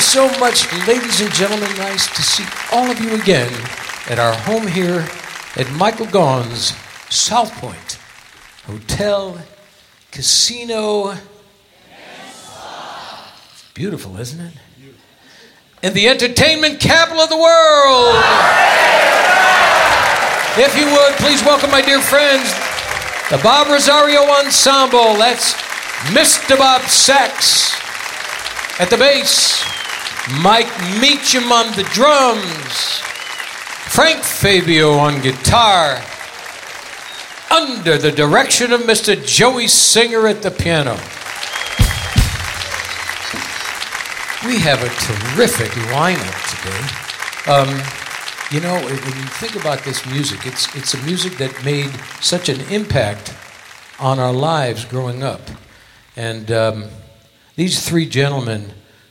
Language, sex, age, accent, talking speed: English, male, 60-79, American, 110 wpm